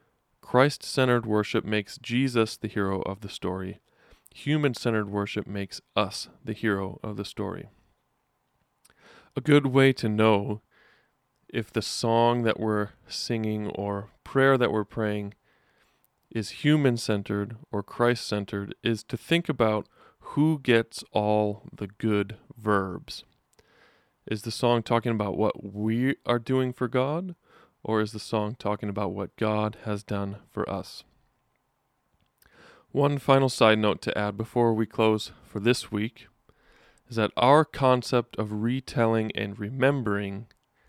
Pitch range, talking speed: 105-125 Hz, 135 wpm